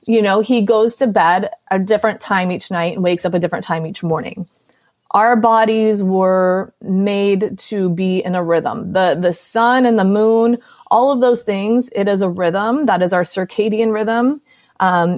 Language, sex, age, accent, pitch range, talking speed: English, female, 30-49, American, 180-220 Hz, 190 wpm